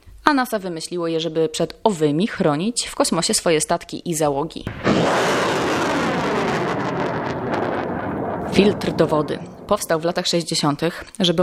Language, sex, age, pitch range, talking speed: Polish, female, 20-39, 165-195 Hz, 115 wpm